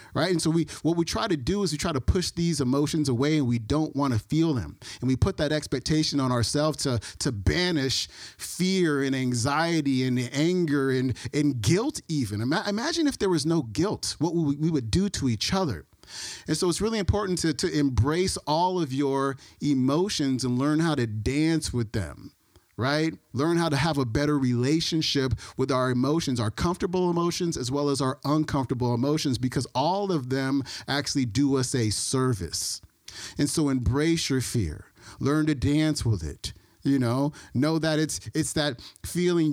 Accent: American